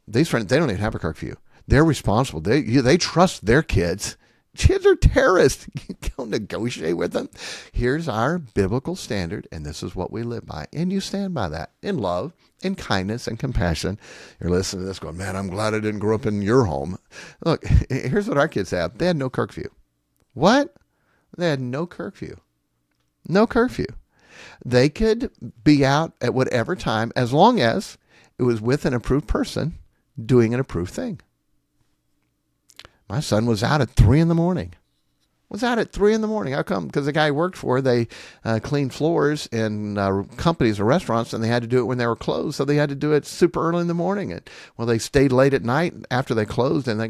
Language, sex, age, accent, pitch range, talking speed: English, male, 50-69, American, 110-165 Hz, 205 wpm